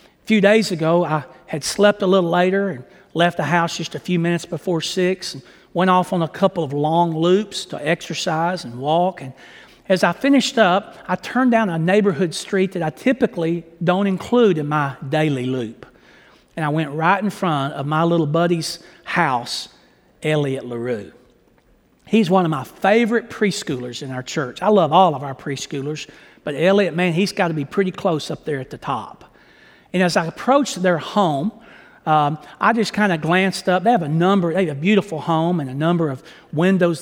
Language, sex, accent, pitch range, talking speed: English, male, American, 155-195 Hz, 200 wpm